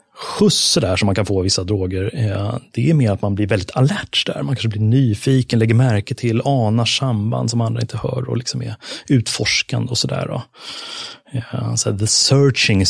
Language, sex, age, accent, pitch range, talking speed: English, male, 30-49, Swedish, 105-130 Hz, 190 wpm